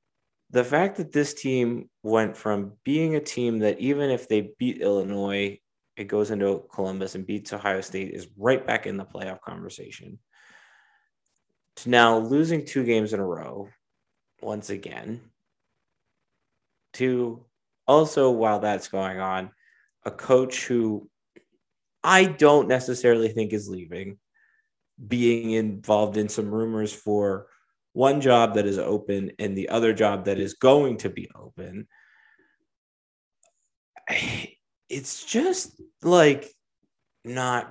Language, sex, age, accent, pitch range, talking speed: English, male, 30-49, American, 105-150 Hz, 130 wpm